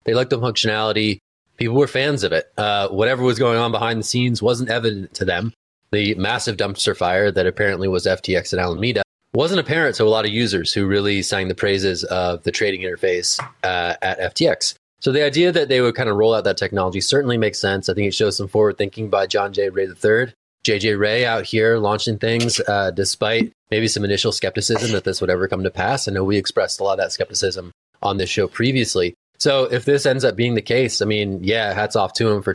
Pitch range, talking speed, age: 100-120 Hz, 230 wpm, 20-39